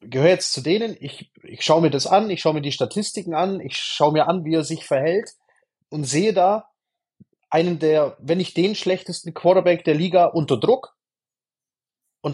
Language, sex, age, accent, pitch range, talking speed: German, male, 30-49, German, 150-185 Hz, 190 wpm